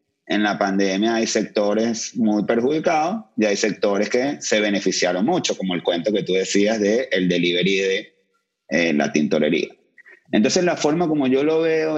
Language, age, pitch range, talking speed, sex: English, 30-49, 100-135 Hz, 170 wpm, male